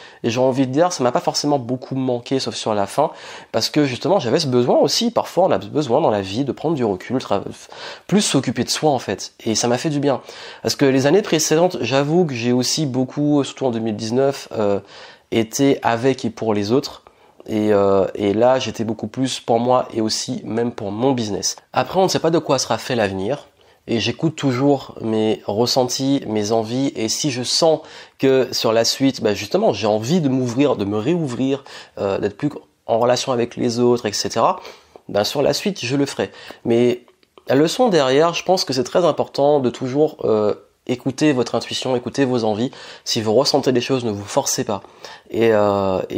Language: French